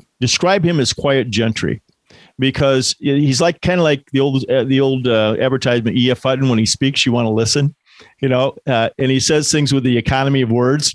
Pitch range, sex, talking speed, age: 120-155 Hz, male, 220 wpm, 50-69